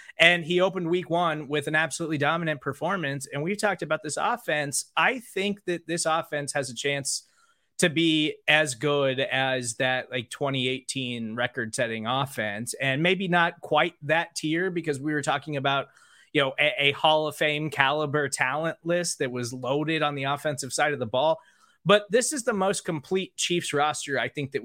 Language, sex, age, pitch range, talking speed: English, male, 20-39, 140-175 Hz, 185 wpm